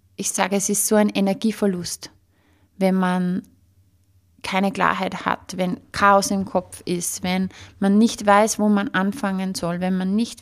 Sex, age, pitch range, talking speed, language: female, 20-39, 185-210 Hz, 160 wpm, German